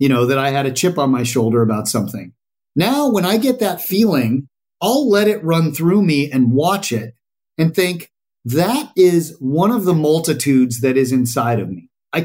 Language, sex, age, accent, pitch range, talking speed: English, male, 40-59, American, 130-195 Hz, 200 wpm